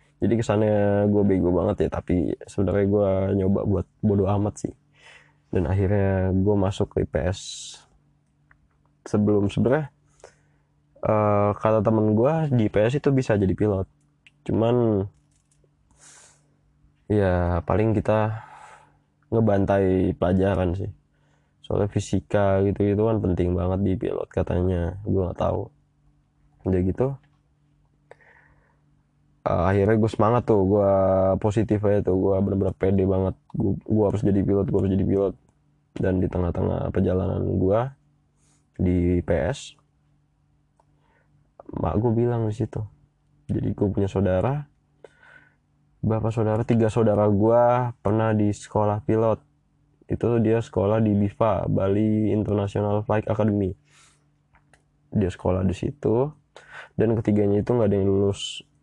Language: Indonesian